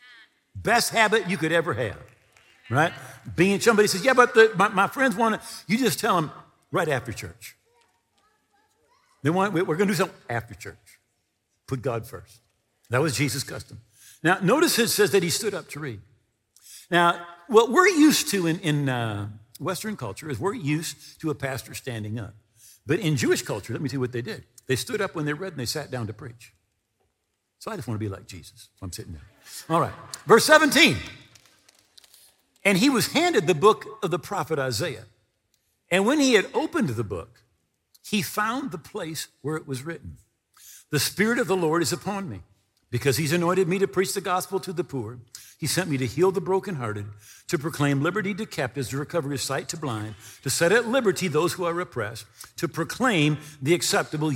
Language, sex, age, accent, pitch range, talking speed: English, male, 60-79, American, 115-190 Hz, 200 wpm